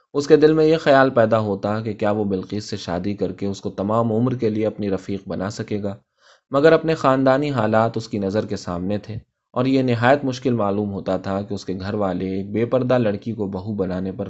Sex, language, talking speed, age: male, Urdu, 240 wpm, 20-39